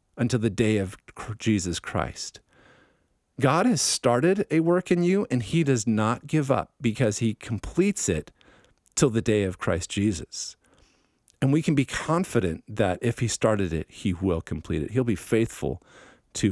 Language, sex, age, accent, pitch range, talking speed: English, male, 50-69, American, 95-130 Hz, 170 wpm